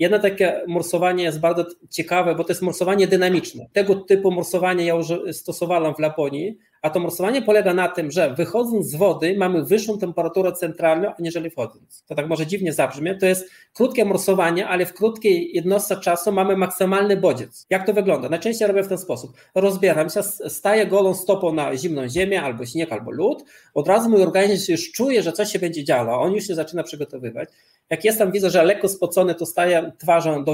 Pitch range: 165-195 Hz